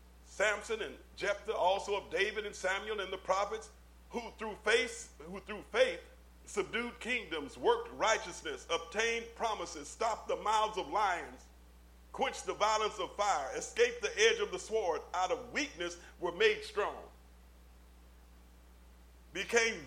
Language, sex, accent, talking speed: English, male, American, 135 wpm